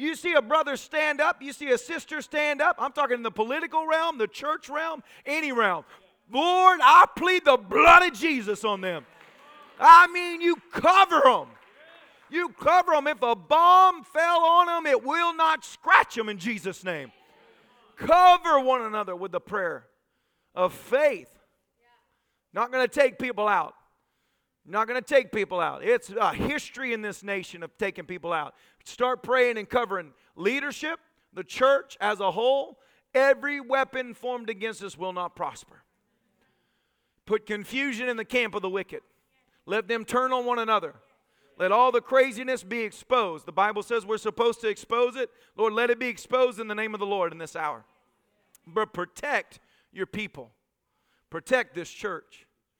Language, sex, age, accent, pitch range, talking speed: English, male, 40-59, American, 210-305 Hz, 170 wpm